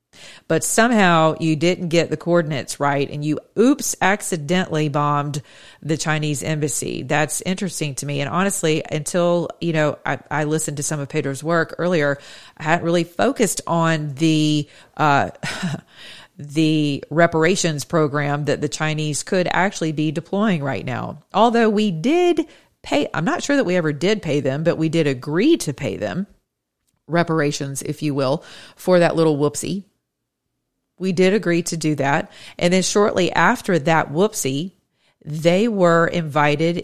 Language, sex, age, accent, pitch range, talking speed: English, female, 40-59, American, 150-195 Hz, 155 wpm